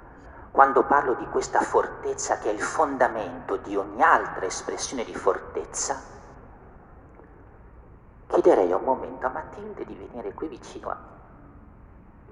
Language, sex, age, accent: Italian, male, 50-69, native